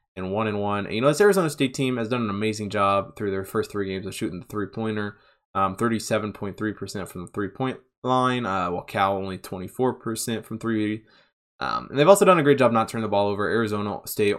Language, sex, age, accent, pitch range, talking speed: English, male, 20-39, American, 100-120 Hz, 245 wpm